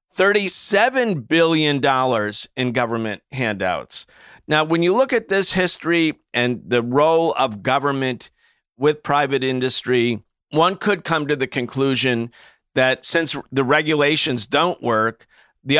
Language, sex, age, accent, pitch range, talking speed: English, male, 40-59, American, 130-180 Hz, 120 wpm